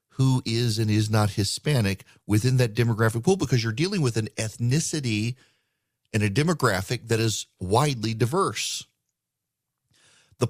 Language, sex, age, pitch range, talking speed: English, male, 40-59, 115-165 Hz, 135 wpm